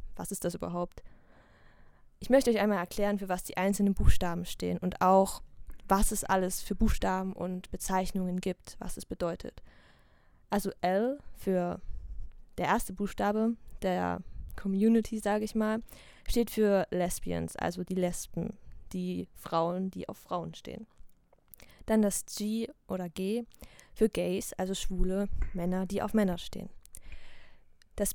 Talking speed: 140 wpm